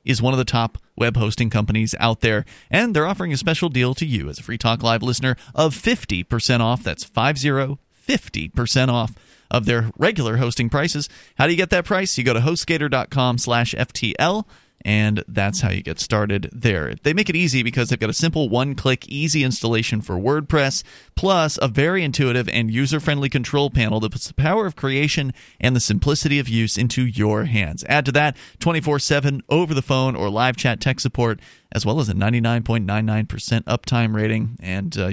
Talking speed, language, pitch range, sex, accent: 190 wpm, English, 115-145 Hz, male, American